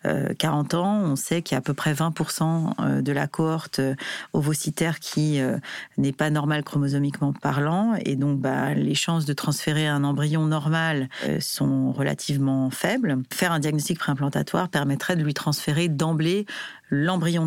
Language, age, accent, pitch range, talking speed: French, 40-59, French, 140-170 Hz, 150 wpm